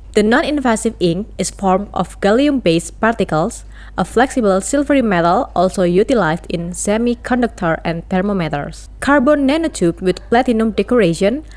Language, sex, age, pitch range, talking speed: Indonesian, female, 20-39, 175-240 Hz, 120 wpm